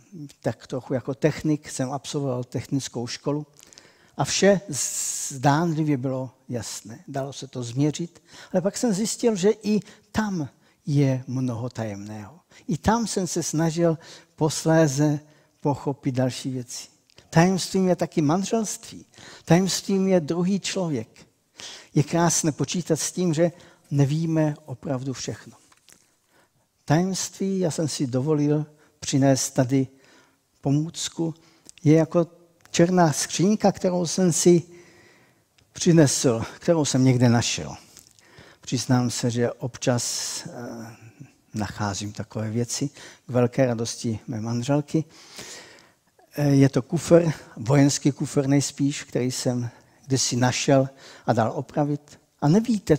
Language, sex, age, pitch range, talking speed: Czech, male, 60-79, 130-165 Hz, 115 wpm